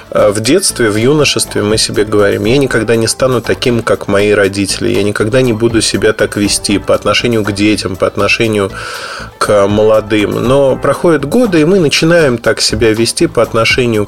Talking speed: 175 wpm